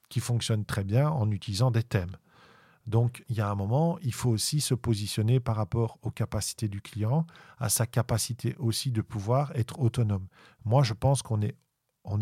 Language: French